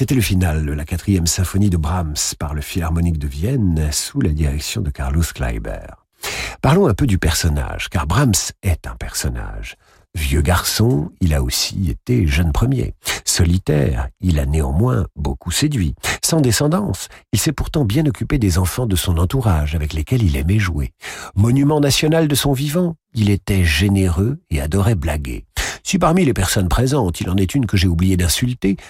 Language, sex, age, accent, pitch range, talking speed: French, male, 50-69, French, 85-120 Hz, 180 wpm